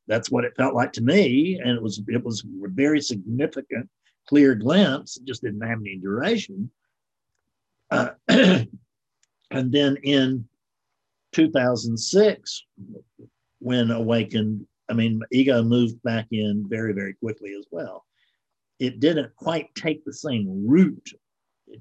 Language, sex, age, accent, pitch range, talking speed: English, male, 50-69, American, 110-135 Hz, 135 wpm